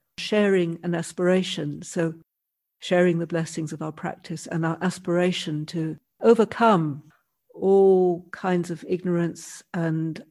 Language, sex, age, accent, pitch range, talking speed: English, female, 60-79, British, 165-185 Hz, 115 wpm